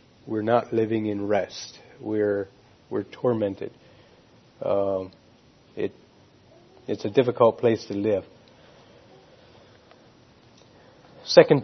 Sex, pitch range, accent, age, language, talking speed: male, 110-135 Hz, American, 50-69, English, 90 wpm